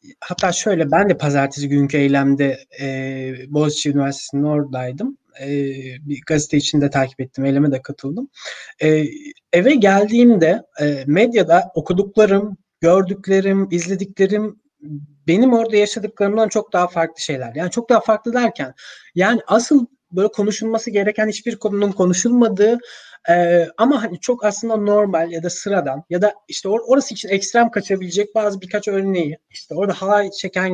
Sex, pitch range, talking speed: male, 155-215 Hz, 145 wpm